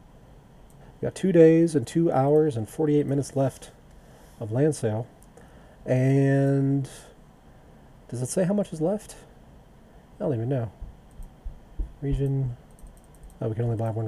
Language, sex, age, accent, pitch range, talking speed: English, male, 40-59, American, 125-160 Hz, 135 wpm